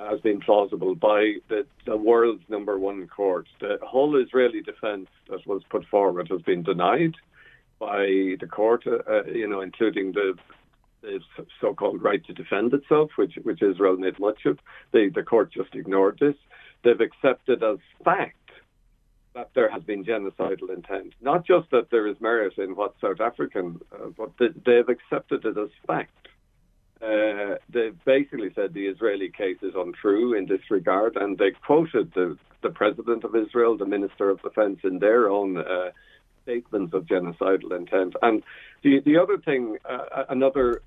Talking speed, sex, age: 170 wpm, male, 50-69